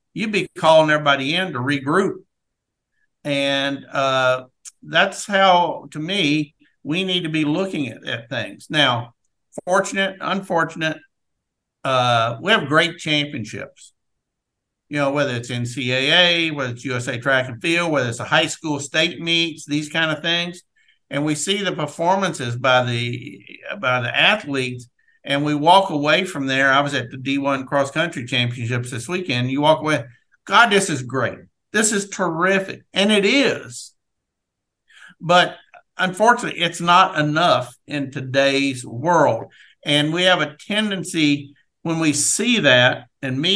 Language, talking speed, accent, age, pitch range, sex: English, 150 wpm, American, 50-69, 135-175 Hz, male